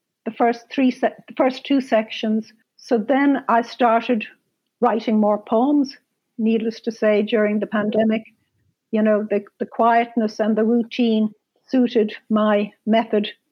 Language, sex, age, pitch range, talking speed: English, female, 60-79, 225-260 Hz, 140 wpm